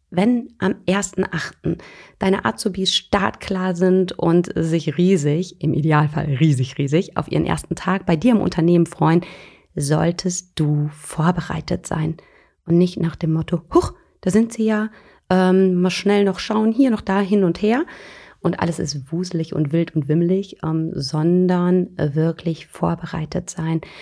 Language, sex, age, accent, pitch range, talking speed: German, female, 30-49, German, 165-190 Hz, 150 wpm